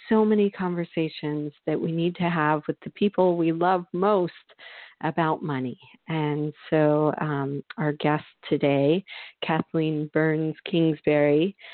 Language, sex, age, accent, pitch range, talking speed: English, female, 40-59, American, 145-170 Hz, 130 wpm